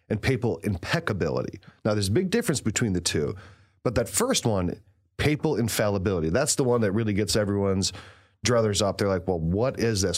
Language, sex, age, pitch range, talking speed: English, male, 30-49, 100-130 Hz, 190 wpm